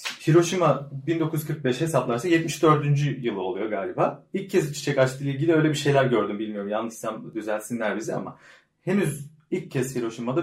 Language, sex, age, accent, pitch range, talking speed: Turkish, male, 30-49, native, 115-150 Hz, 145 wpm